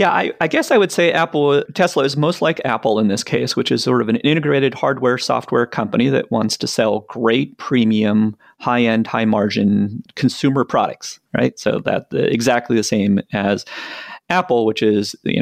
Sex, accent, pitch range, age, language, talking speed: male, American, 100-135 Hz, 30-49, English, 185 wpm